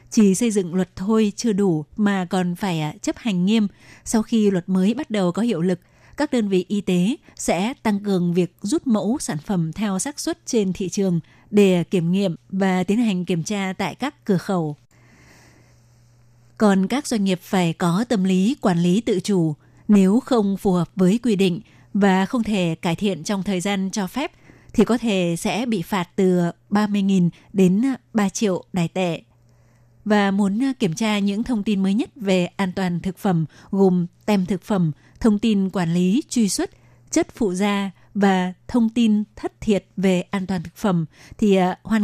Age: 20-39